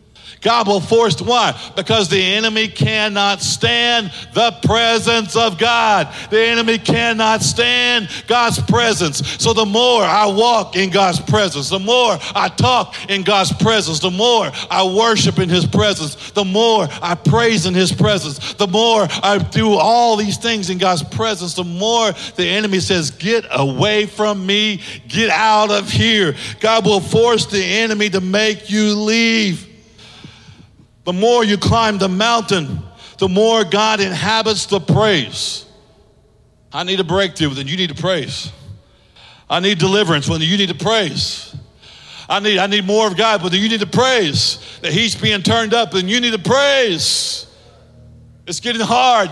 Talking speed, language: 165 wpm, English